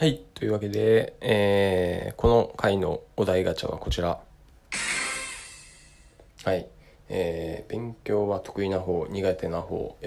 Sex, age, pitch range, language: male, 20-39, 85-105 Hz, Japanese